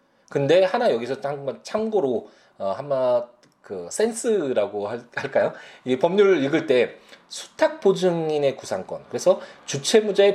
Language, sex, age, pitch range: Korean, male, 20-39, 135-210 Hz